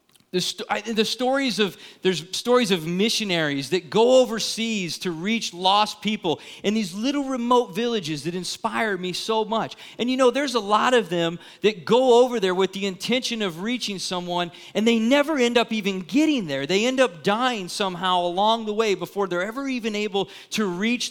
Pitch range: 180-225 Hz